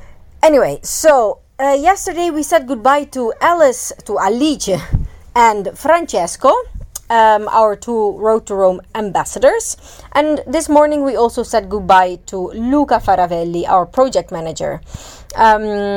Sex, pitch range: female, 190-275 Hz